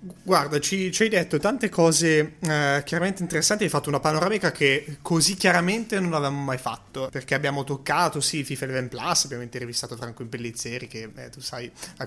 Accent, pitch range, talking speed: native, 140-180 Hz, 185 wpm